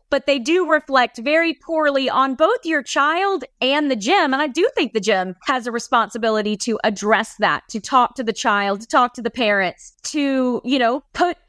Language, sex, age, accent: English, female, 30-49, American